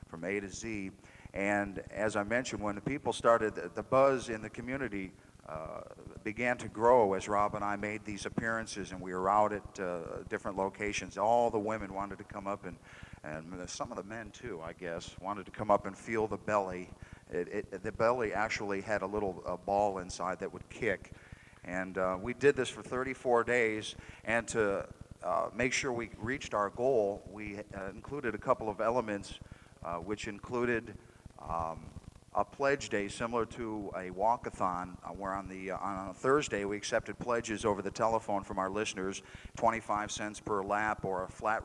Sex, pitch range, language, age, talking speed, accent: male, 95-115 Hz, English, 50-69, 185 wpm, American